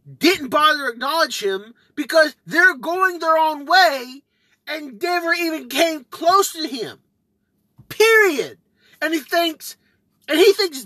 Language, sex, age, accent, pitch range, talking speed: English, male, 30-49, American, 300-385 Hz, 140 wpm